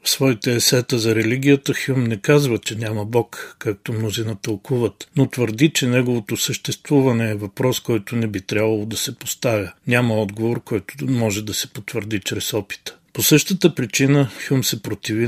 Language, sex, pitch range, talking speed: Bulgarian, male, 110-130 Hz, 170 wpm